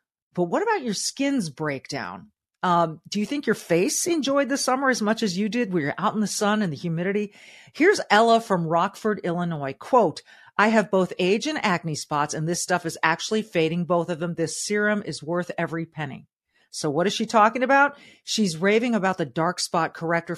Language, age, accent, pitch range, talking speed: English, 40-59, American, 165-220 Hz, 205 wpm